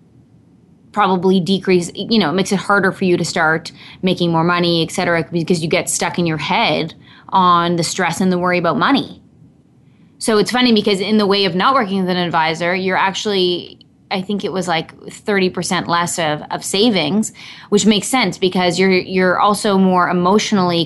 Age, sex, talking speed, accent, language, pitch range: 20-39, female, 195 wpm, American, English, 165-200 Hz